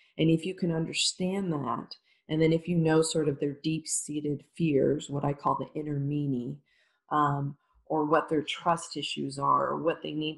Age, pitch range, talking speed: 40-59, 140-165 Hz, 190 wpm